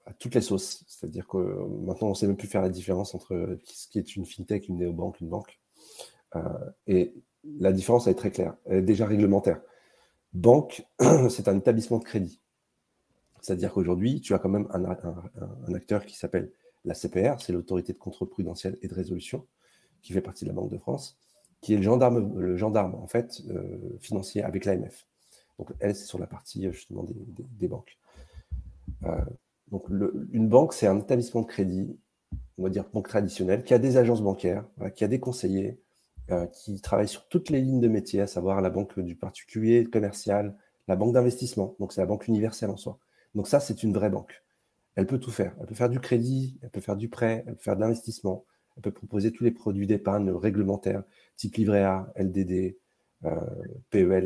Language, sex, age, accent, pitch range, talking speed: French, male, 40-59, French, 95-115 Hz, 205 wpm